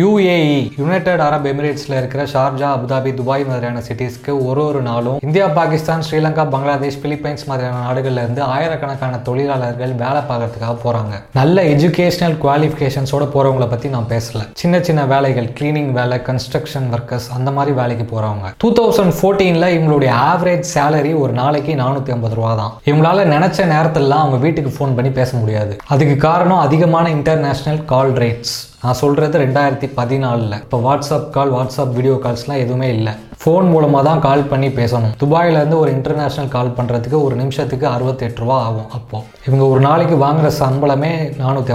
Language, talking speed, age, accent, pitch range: Tamil, 125 wpm, 20-39, native, 125-155 Hz